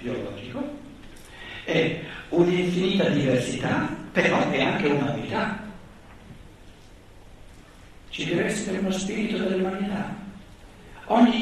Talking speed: 80 wpm